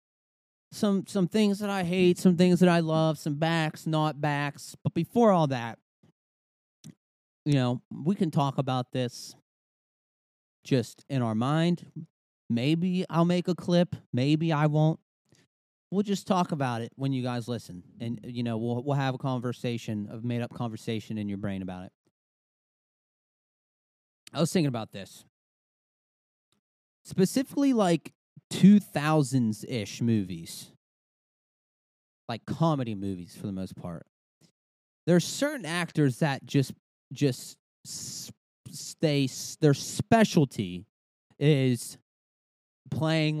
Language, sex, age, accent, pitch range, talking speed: English, male, 30-49, American, 120-170 Hz, 130 wpm